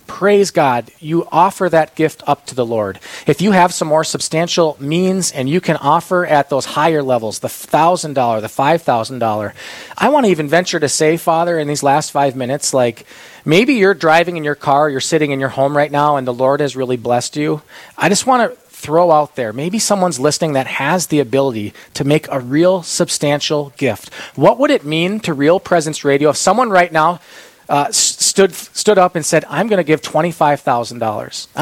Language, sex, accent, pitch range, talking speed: English, male, American, 140-180 Hz, 205 wpm